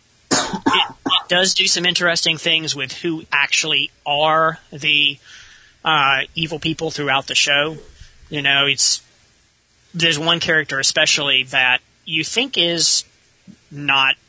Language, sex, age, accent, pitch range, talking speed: English, male, 30-49, American, 130-160 Hz, 125 wpm